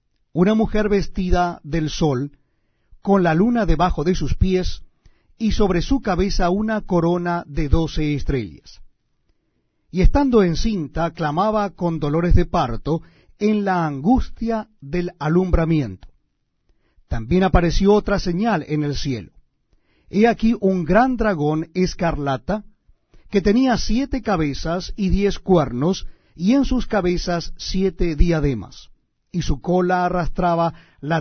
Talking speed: 125 wpm